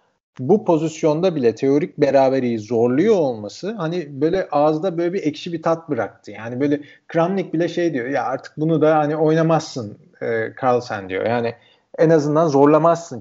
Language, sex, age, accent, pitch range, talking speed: Turkish, male, 40-59, native, 135-175 Hz, 160 wpm